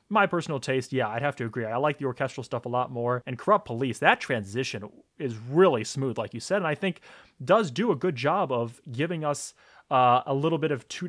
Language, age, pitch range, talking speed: English, 20-39, 115-145 Hz, 240 wpm